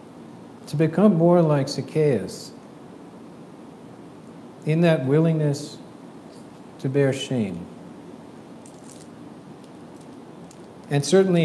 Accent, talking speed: American, 70 wpm